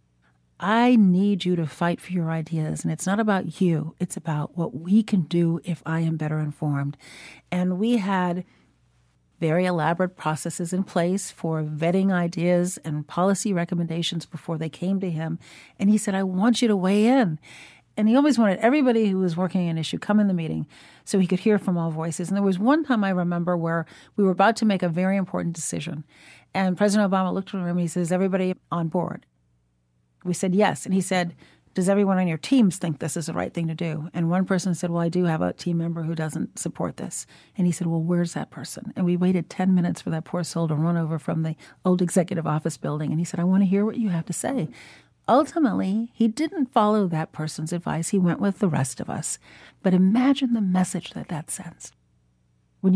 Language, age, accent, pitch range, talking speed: English, 40-59, American, 160-195 Hz, 225 wpm